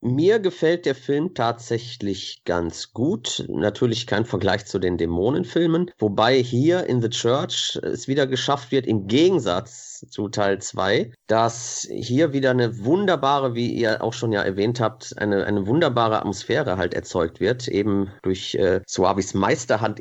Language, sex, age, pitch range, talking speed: German, male, 40-59, 100-120 Hz, 155 wpm